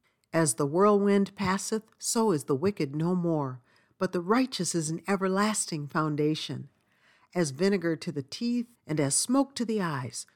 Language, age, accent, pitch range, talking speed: English, 50-69, American, 140-200 Hz, 160 wpm